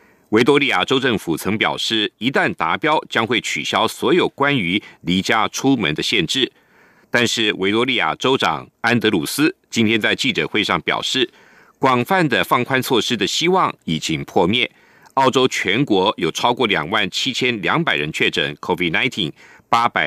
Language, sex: German, male